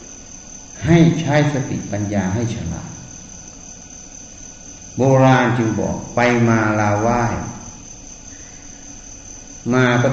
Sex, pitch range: male, 95-120 Hz